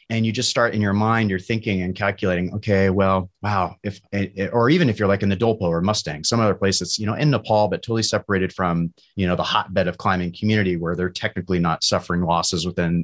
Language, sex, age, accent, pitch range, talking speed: English, male, 30-49, American, 90-110 Hz, 245 wpm